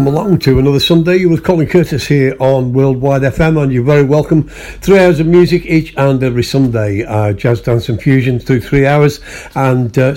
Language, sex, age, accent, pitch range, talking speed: English, male, 60-79, British, 120-150 Hz, 195 wpm